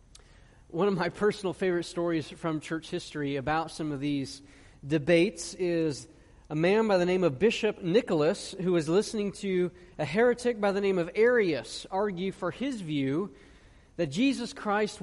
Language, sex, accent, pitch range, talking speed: English, male, American, 165-215 Hz, 165 wpm